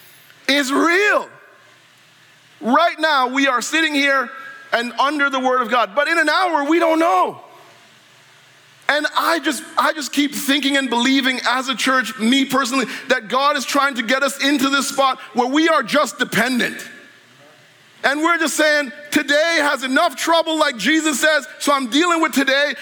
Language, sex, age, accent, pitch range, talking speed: English, male, 40-59, American, 260-305 Hz, 175 wpm